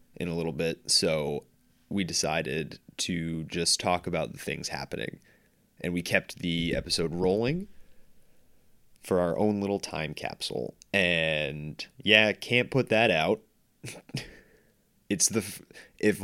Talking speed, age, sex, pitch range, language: 130 wpm, 20-39, male, 85-120 Hz, English